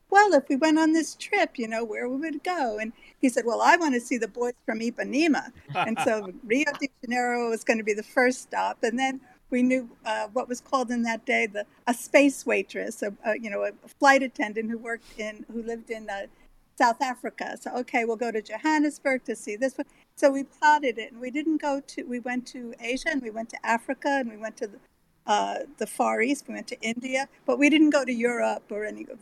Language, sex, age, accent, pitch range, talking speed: English, female, 50-69, American, 235-280 Hz, 240 wpm